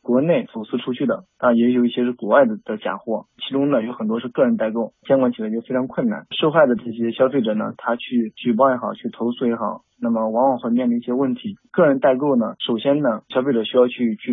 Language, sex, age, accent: Chinese, male, 20-39, native